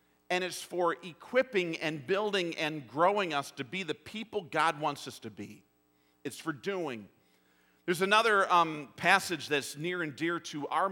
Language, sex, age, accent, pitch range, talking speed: English, male, 50-69, American, 125-205 Hz, 170 wpm